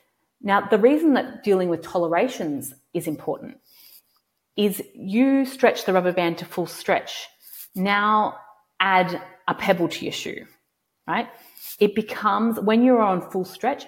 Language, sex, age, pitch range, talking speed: English, female, 30-49, 180-245 Hz, 145 wpm